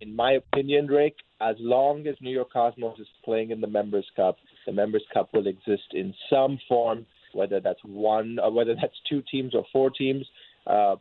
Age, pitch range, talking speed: 30-49, 110-180 Hz, 195 wpm